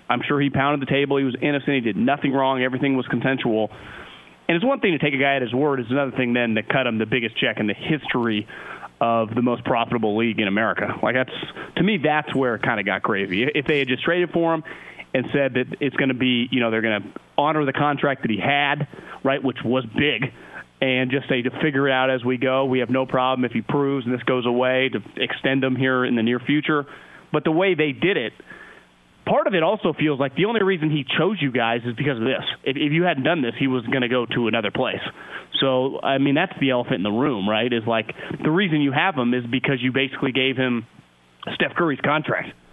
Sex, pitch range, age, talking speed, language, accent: male, 125-145 Hz, 30-49, 250 wpm, English, American